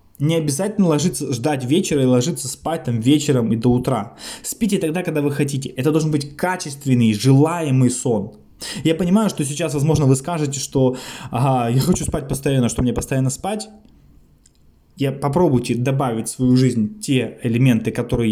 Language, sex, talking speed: Russian, male, 165 wpm